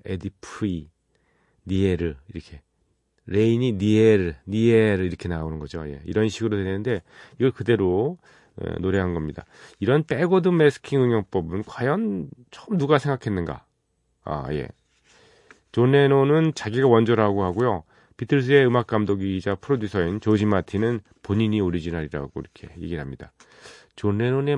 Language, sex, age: Korean, male, 40-59